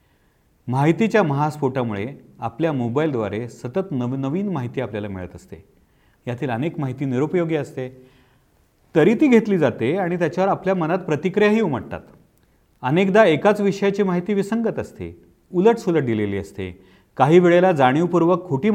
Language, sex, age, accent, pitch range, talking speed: Marathi, male, 40-59, native, 115-160 Hz, 120 wpm